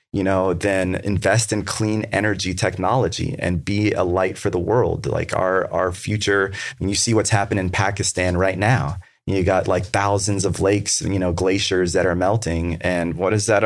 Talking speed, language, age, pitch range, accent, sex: 200 wpm, English, 30-49, 90-110 Hz, American, male